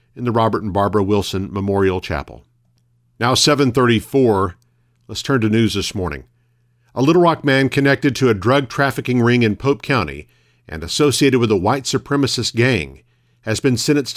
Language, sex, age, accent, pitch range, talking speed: English, male, 50-69, American, 105-135 Hz, 165 wpm